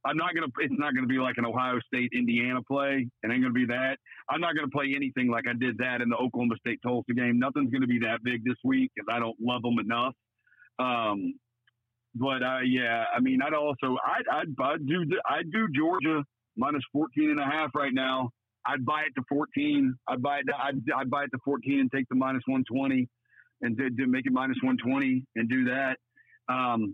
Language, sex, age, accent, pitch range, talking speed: English, male, 40-59, American, 115-135 Hz, 225 wpm